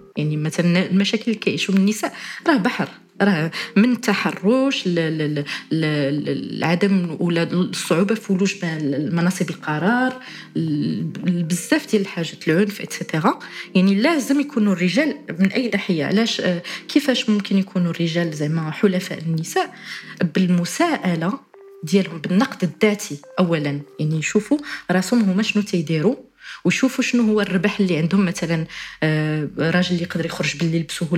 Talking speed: 115 wpm